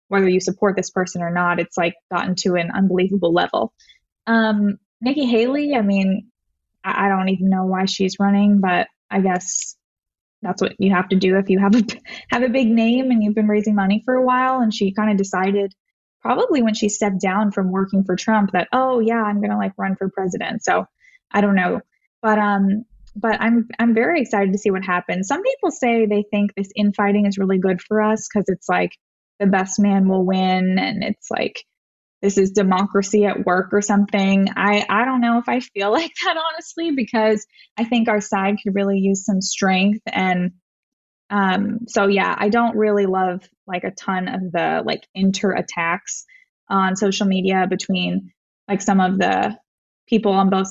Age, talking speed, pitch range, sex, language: 10-29, 200 wpm, 190-220 Hz, female, English